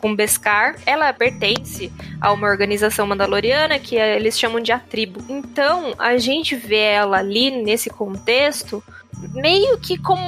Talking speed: 145 wpm